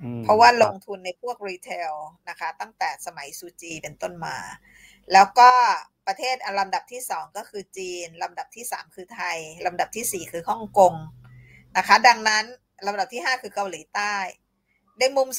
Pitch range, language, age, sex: 180-215 Hz, Thai, 20-39, female